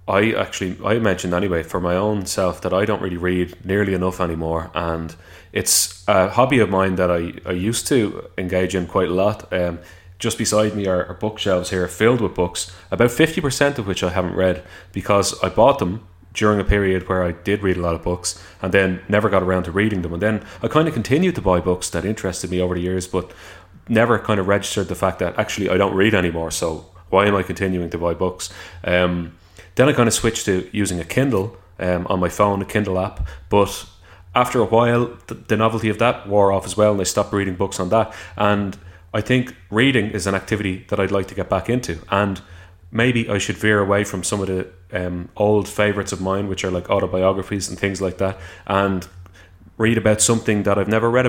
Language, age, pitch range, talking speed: English, 20-39, 90-105 Hz, 225 wpm